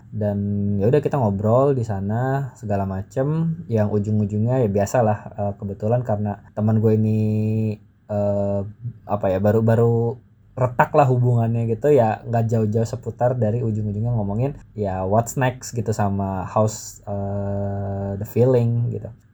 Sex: male